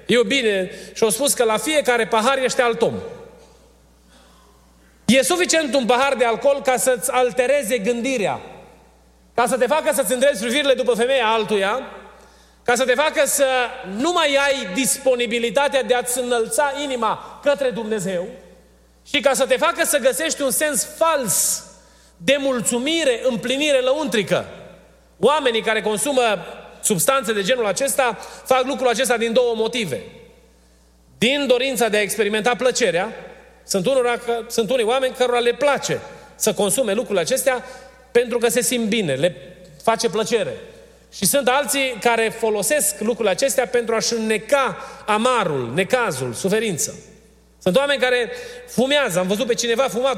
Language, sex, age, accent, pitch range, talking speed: Romanian, male, 30-49, native, 220-270 Hz, 145 wpm